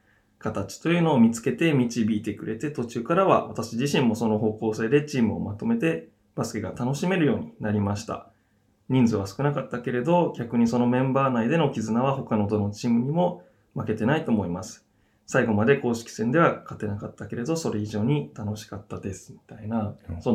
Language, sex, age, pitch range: Japanese, male, 20-39, 105-130 Hz